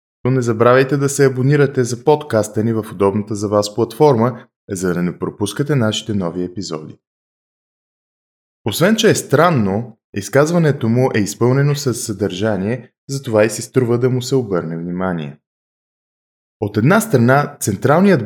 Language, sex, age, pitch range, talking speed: Bulgarian, male, 20-39, 100-130 Hz, 140 wpm